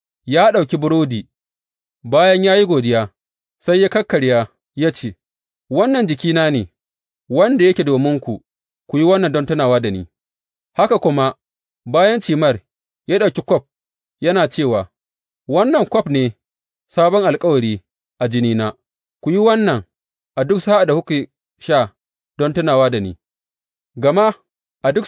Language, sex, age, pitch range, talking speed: English, male, 30-49, 115-175 Hz, 95 wpm